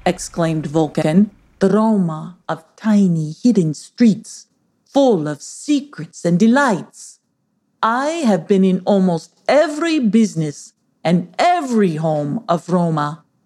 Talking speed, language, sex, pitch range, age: 110 wpm, English, female, 170-235 Hz, 40-59